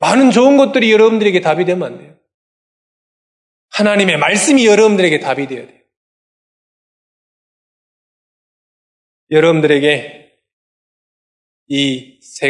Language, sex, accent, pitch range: Korean, male, native, 130-205 Hz